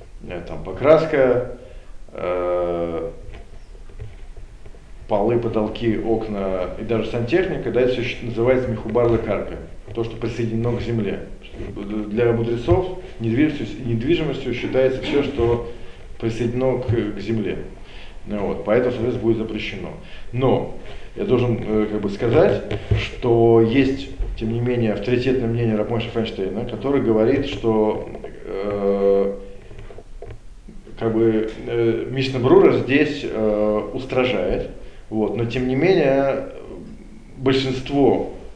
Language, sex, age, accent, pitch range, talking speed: Russian, male, 40-59, native, 105-130 Hz, 110 wpm